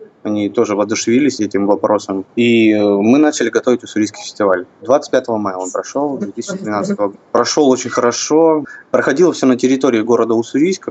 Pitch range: 105-130 Hz